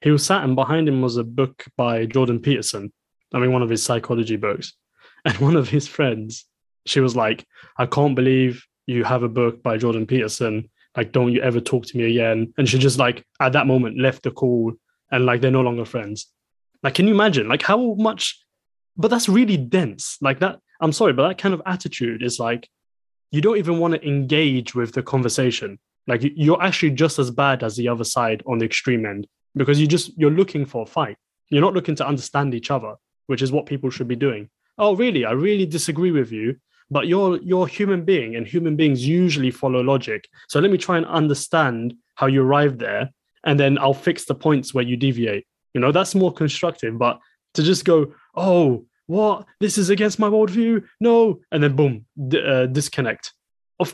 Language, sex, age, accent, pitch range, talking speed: English, male, 20-39, British, 125-165 Hz, 215 wpm